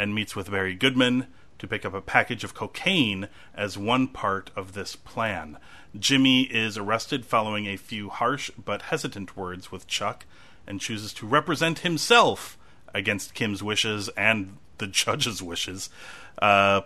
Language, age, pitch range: English, 30-49, 95-120 Hz